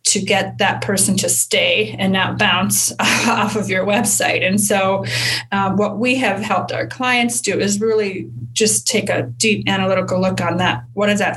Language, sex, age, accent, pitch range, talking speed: English, female, 30-49, American, 155-215 Hz, 190 wpm